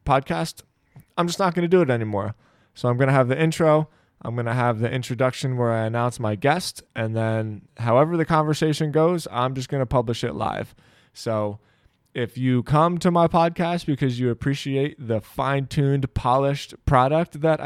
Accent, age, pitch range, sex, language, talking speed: American, 20-39, 120-145 Hz, male, English, 185 wpm